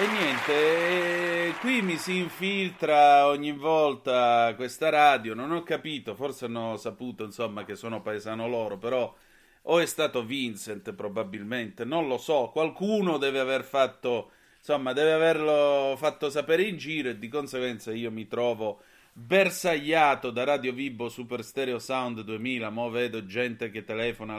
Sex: male